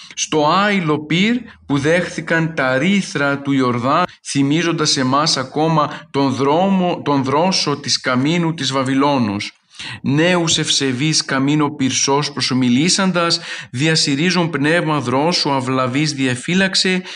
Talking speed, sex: 100 wpm, male